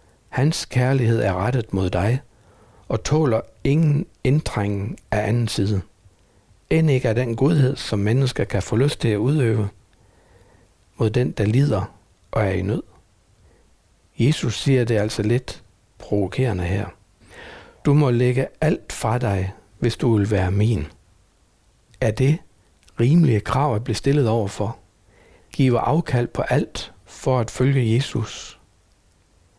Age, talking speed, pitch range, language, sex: 60-79, 140 wpm, 100-125 Hz, Danish, male